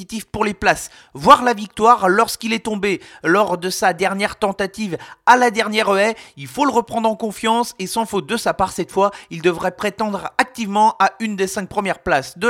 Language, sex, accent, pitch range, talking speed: French, male, French, 185-225 Hz, 205 wpm